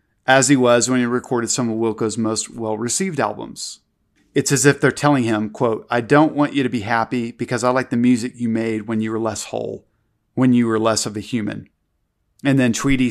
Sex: male